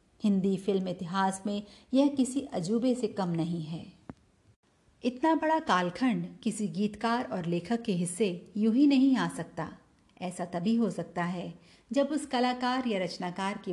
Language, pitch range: Hindi, 180-230 Hz